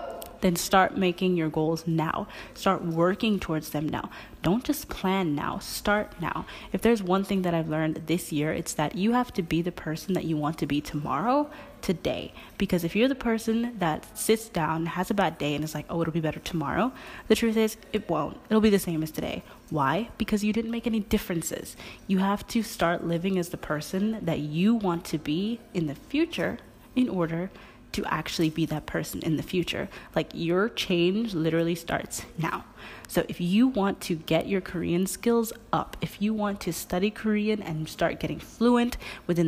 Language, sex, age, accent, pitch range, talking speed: English, female, 20-39, American, 160-215 Hz, 200 wpm